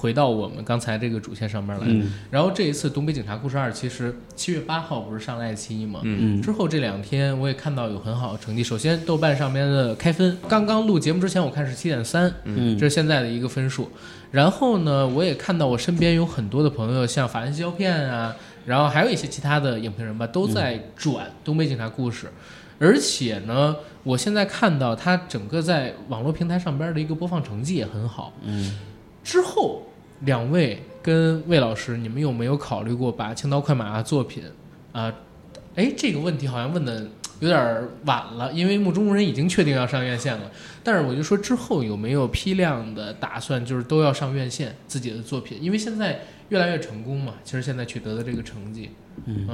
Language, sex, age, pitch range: Chinese, male, 20-39, 115-165 Hz